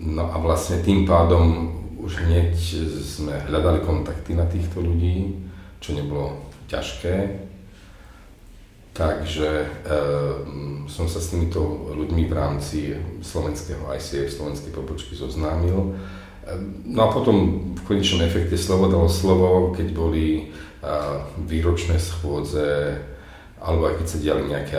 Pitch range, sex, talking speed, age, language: 75-85 Hz, male, 125 wpm, 40-59, Slovak